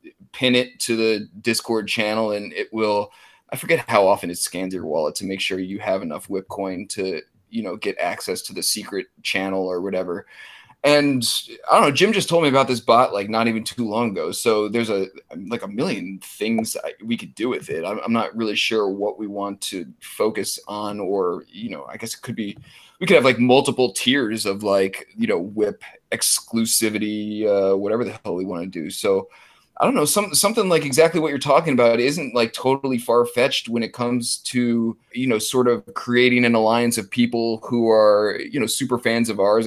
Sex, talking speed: male, 215 wpm